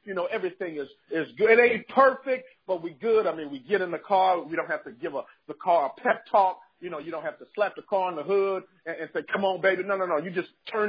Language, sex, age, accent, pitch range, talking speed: English, male, 40-59, American, 180-240 Hz, 300 wpm